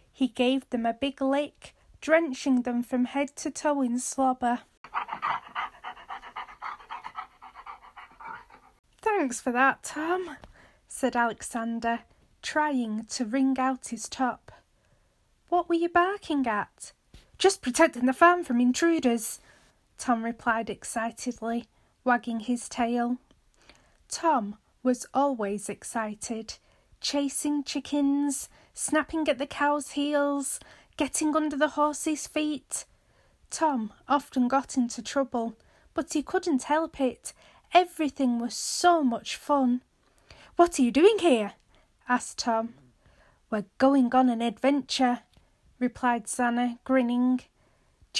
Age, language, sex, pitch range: 10-29, English, female, 240-300 Hz